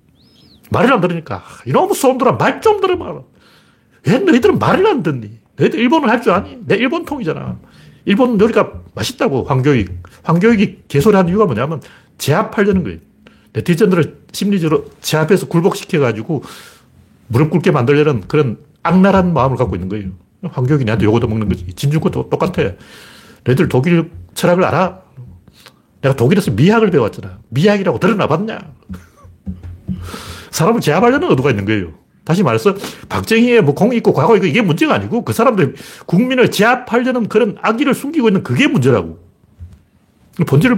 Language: Korean